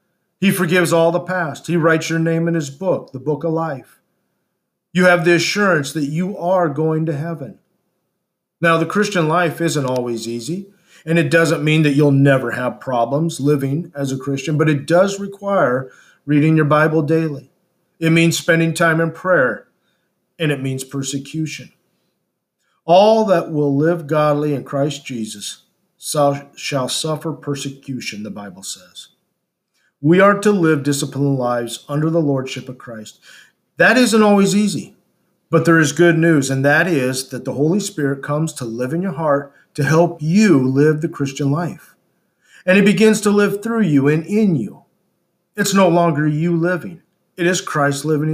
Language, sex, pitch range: English, male, 140-180 Hz